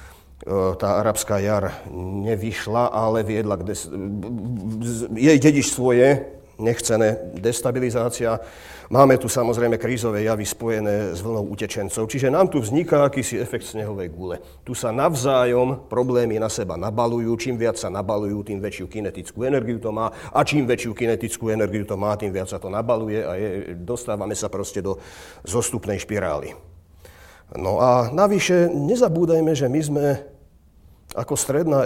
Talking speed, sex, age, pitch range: 145 wpm, male, 40-59, 100-125 Hz